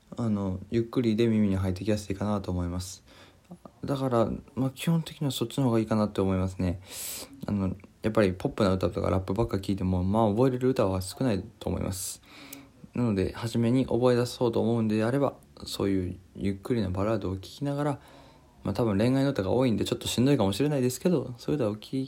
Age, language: 20-39, Japanese